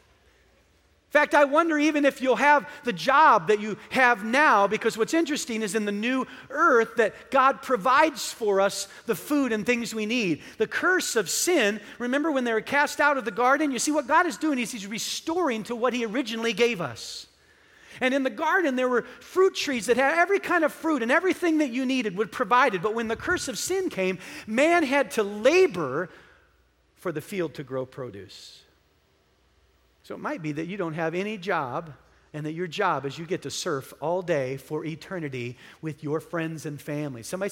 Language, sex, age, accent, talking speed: English, male, 40-59, American, 205 wpm